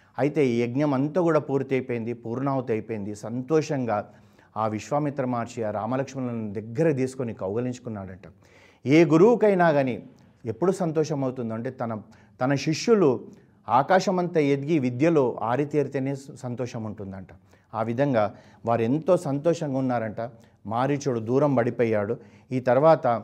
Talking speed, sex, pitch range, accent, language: 105 wpm, male, 110-140 Hz, native, Telugu